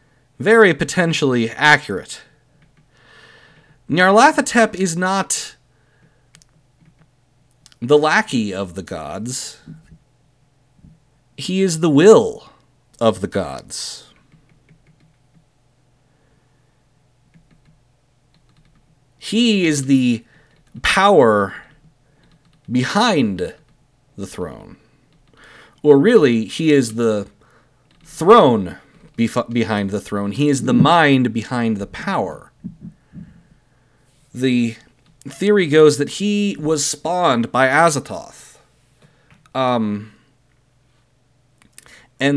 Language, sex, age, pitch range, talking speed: English, male, 40-59, 120-155 Hz, 75 wpm